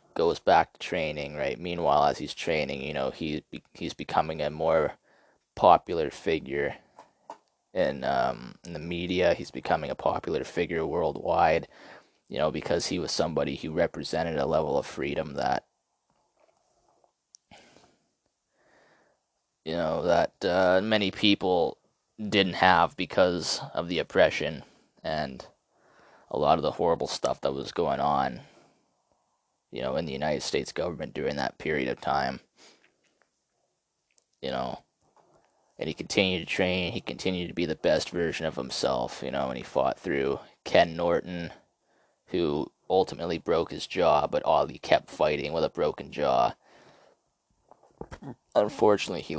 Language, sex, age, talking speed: English, male, 20-39, 140 wpm